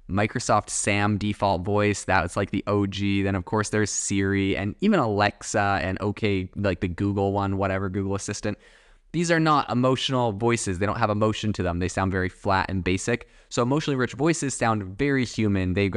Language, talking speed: English, 190 wpm